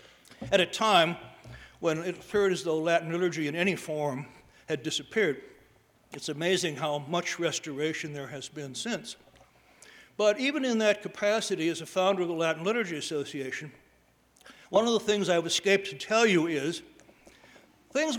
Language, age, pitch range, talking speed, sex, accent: English, 60-79, 150-185 Hz, 160 wpm, male, American